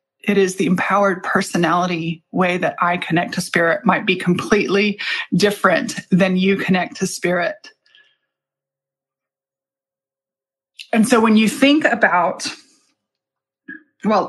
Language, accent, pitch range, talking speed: English, American, 185-260 Hz, 115 wpm